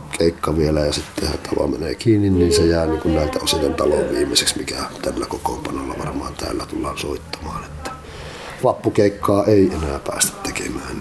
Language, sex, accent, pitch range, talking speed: Finnish, male, native, 95-110 Hz, 145 wpm